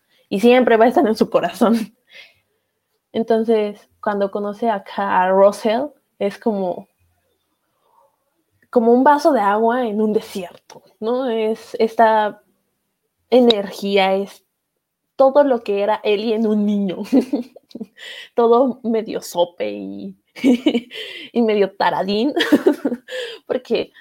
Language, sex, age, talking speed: Spanish, female, 20-39, 110 wpm